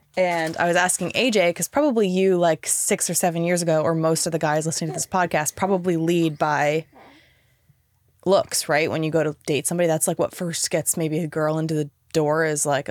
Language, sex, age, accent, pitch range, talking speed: English, female, 20-39, American, 155-190 Hz, 220 wpm